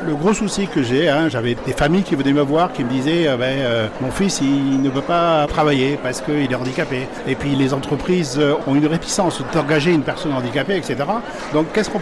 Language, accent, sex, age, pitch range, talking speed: French, French, male, 50-69, 135-175 Hz, 220 wpm